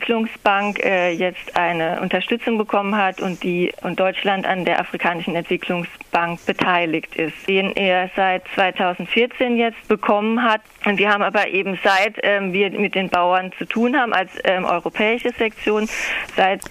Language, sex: German, female